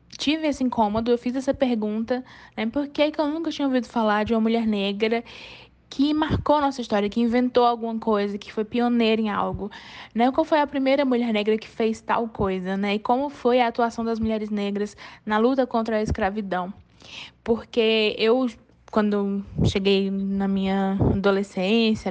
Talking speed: 175 wpm